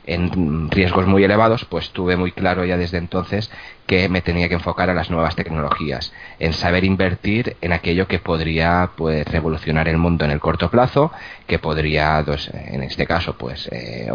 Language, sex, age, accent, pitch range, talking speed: Spanish, male, 30-49, Spanish, 80-95 Hz, 180 wpm